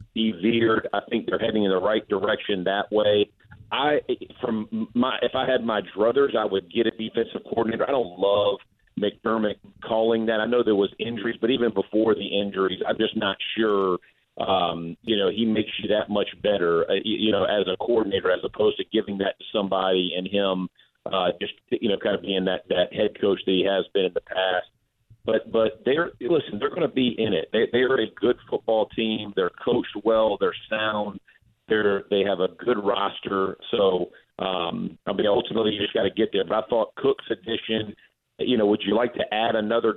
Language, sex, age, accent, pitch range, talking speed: English, male, 40-59, American, 100-120 Hz, 210 wpm